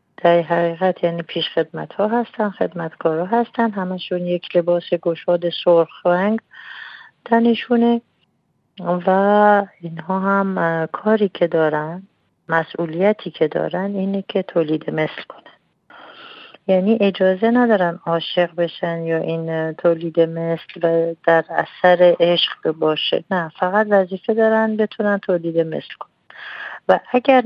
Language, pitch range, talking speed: Persian, 170-200 Hz, 120 wpm